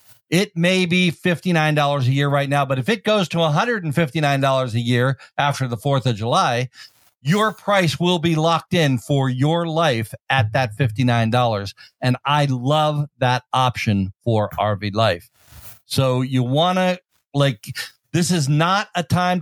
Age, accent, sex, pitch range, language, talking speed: 50-69, American, male, 130-170 Hz, English, 160 wpm